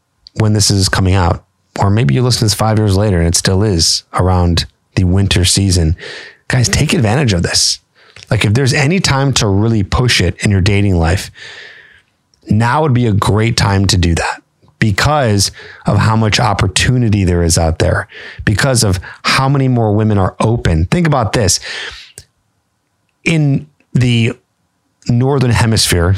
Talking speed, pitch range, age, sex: 165 wpm, 95-120 Hz, 30-49, male